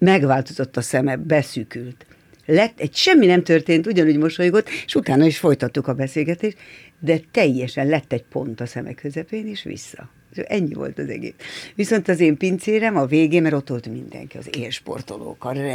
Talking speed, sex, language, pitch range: 170 wpm, female, Hungarian, 135-170 Hz